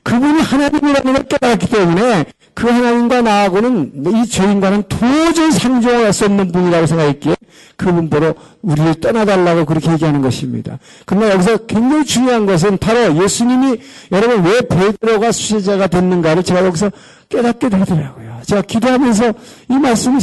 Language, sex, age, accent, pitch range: Korean, male, 50-69, native, 175-245 Hz